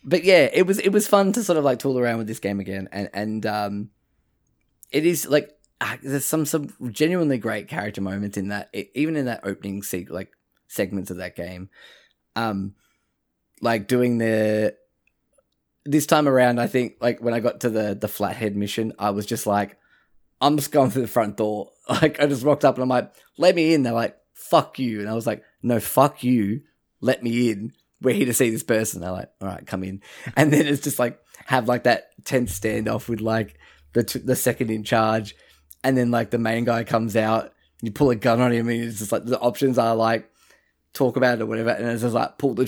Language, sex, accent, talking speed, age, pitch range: English, male, Australian, 225 wpm, 10-29, 110-130 Hz